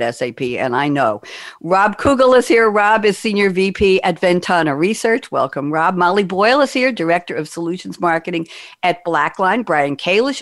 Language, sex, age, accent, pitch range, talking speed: English, female, 60-79, American, 160-230 Hz, 165 wpm